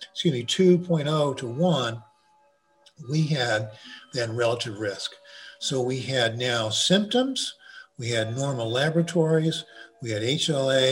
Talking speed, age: 120 wpm, 50-69